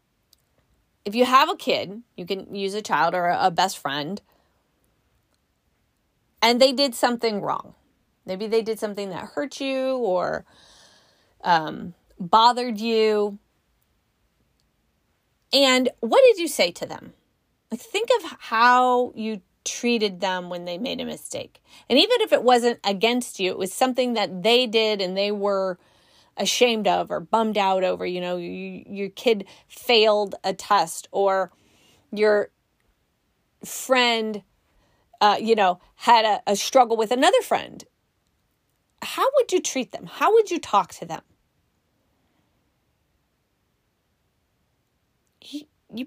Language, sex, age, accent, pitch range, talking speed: English, female, 30-49, American, 200-260 Hz, 135 wpm